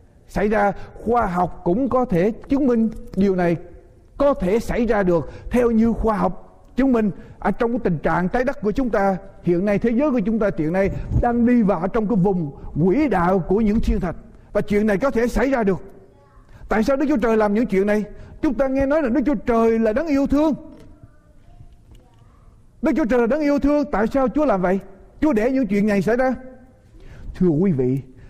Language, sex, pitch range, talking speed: Vietnamese, male, 185-270 Hz, 220 wpm